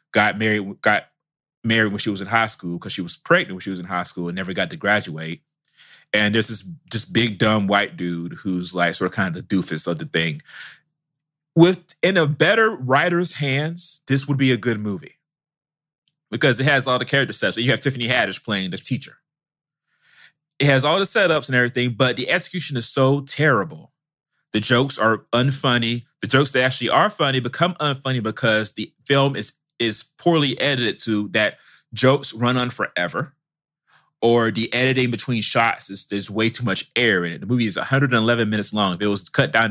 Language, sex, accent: English, male, American